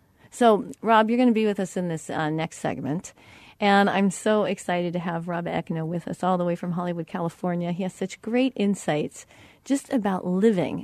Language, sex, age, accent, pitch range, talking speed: English, female, 40-59, American, 170-220 Hz, 205 wpm